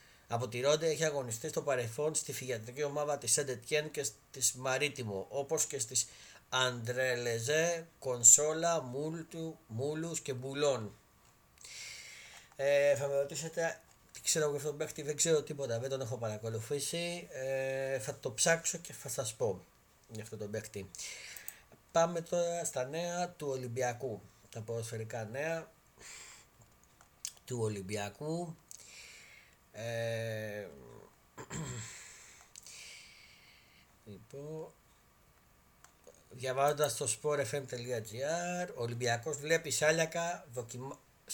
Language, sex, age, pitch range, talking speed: Greek, male, 30-49, 115-155 Hz, 100 wpm